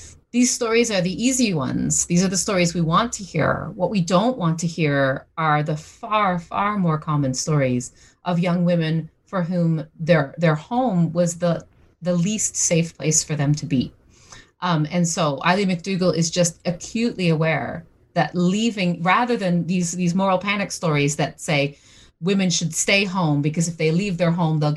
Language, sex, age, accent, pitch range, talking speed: English, female, 30-49, American, 155-185 Hz, 185 wpm